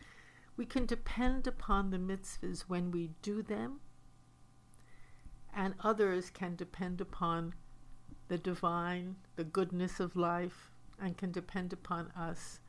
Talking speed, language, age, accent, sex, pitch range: 125 wpm, English, 60-79, American, female, 175-205 Hz